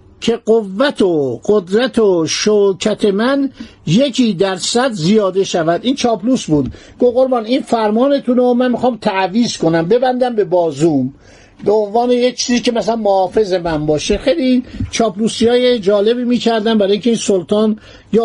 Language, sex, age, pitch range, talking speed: Persian, male, 50-69, 185-240 Hz, 135 wpm